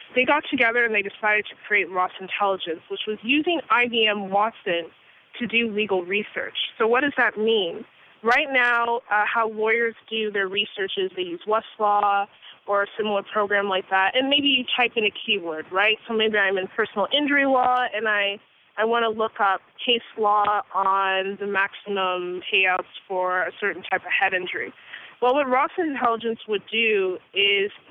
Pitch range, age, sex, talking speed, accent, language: 200-245 Hz, 20-39, female, 180 wpm, American, English